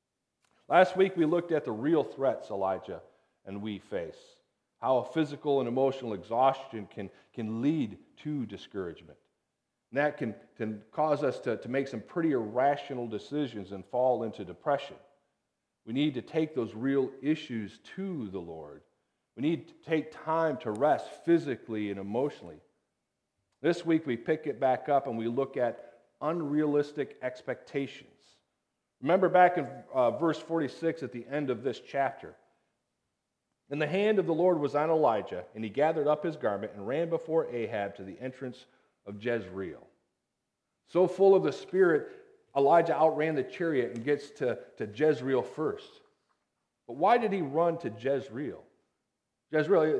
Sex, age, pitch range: male, 40-59, 120-165 Hz